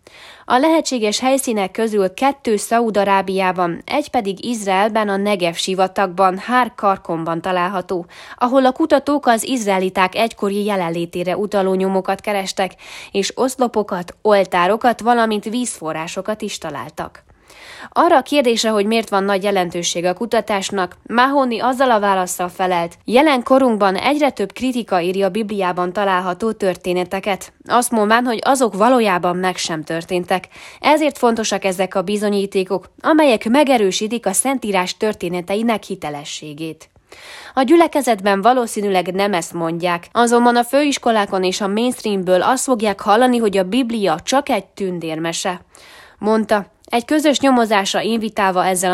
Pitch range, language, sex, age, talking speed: 185-240 Hz, Hungarian, female, 20-39, 125 wpm